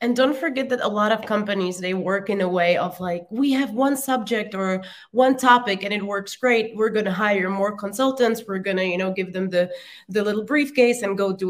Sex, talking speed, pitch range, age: female, 240 wpm, 175-210 Hz, 20-39